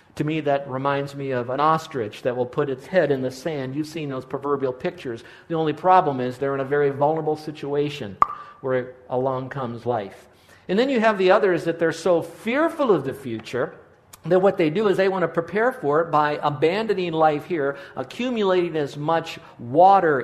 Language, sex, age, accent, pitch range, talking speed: English, male, 50-69, American, 140-175 Hz, 200 wpm